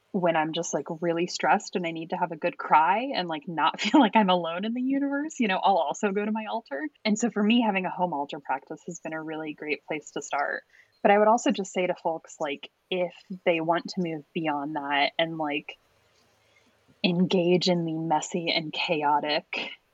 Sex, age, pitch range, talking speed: female, 20-39, 160-210 Hz, 220 wpm